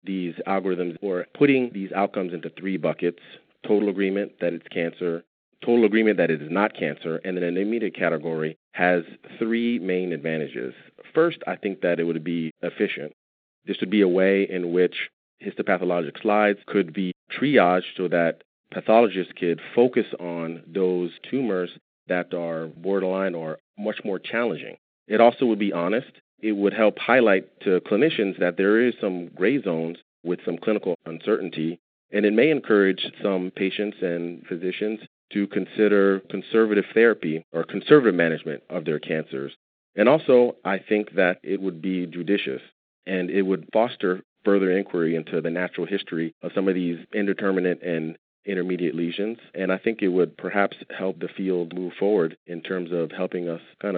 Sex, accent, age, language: male, American, 30-49, English